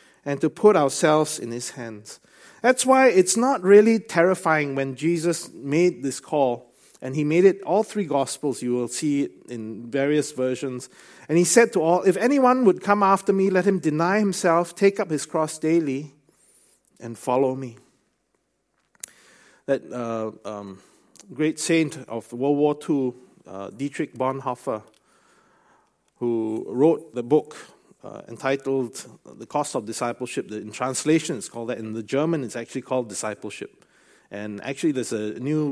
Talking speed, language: 160 wpm, English